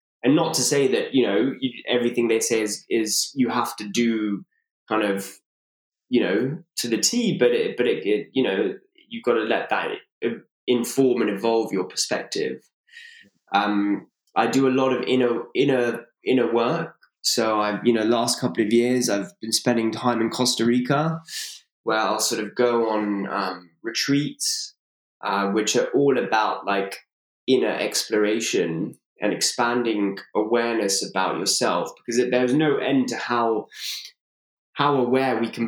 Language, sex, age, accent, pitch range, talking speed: English, male, 10-29, British, 115-135 Hz, 160 wpm